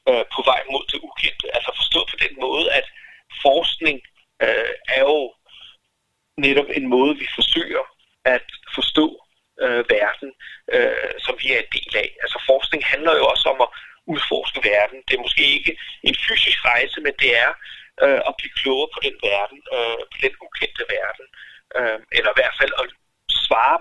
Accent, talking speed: native, 160 wpm